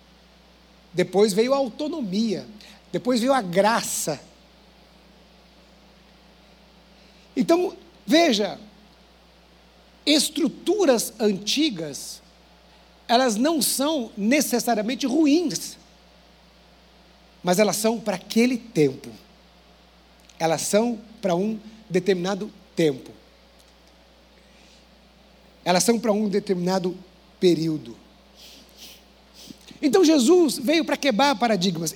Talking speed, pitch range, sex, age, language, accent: 75 wpm, 195-300 Hz, male, 60-79, Portuguese, Brazilian